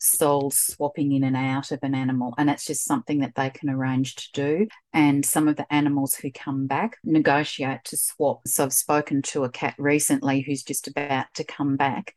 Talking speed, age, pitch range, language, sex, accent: 205 wpm, 40-59, 140-155 Hz, English, female, Australian